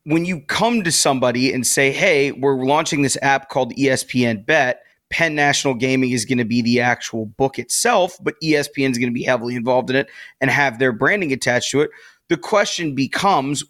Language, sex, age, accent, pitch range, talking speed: English, male, 30-49, American, 130-155 Hz, 200 wpm